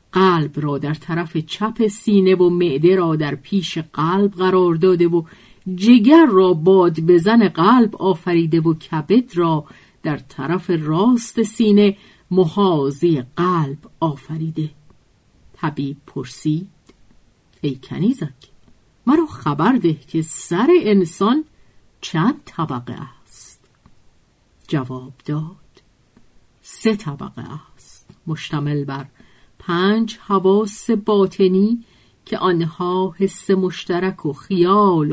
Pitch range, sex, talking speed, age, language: 150-195 Hz, female, 100 wpm, 50-69, Persian